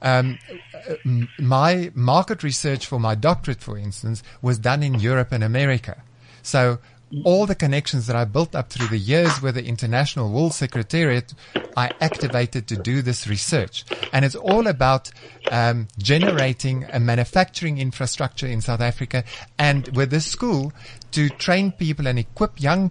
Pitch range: 120-155 Hz